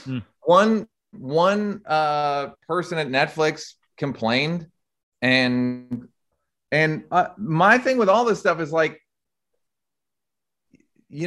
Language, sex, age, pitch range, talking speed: English, male, 30-49, 120-160 Hz, 100 wpm